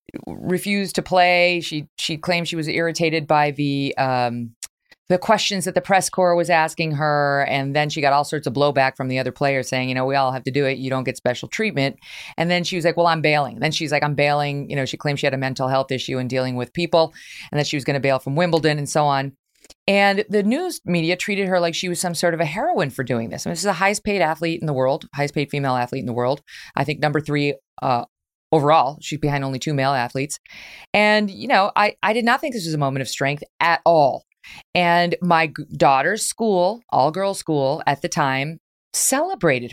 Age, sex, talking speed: 30-49, female, 240 wpm